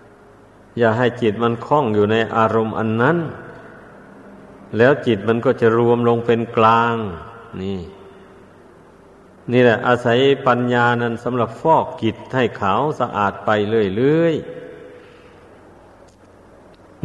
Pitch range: 110-125 Hz